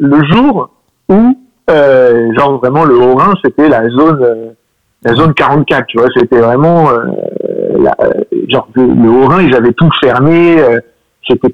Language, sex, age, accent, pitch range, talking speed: French, male, 50-69, French, 130-180 Hz, 160 wpm